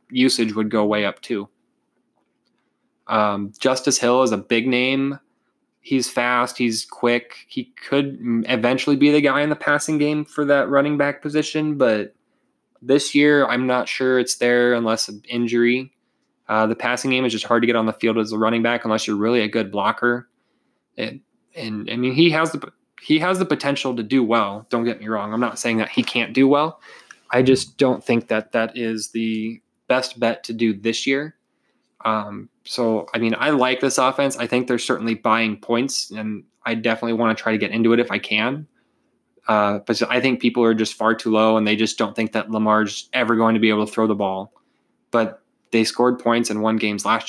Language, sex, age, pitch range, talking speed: English, male, 20-39, 110-130 Hz, 210 wpm